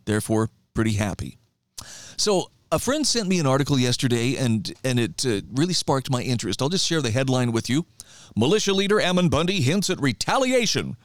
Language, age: English, 50-69